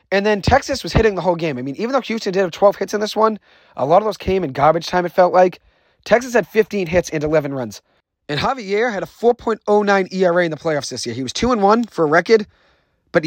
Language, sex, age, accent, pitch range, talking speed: English, male, 30-49, American, 155-210 Hz, 255 wpm